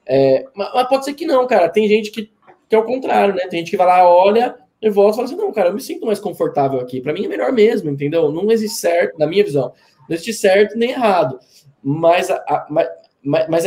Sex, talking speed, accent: male, 225 wpm, Brazilian